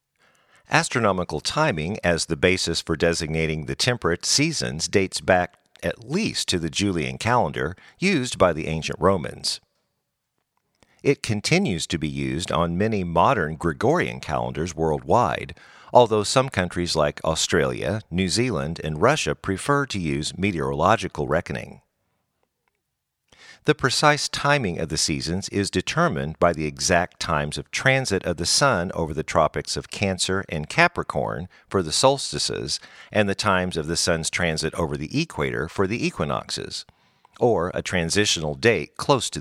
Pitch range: 80-105 Hz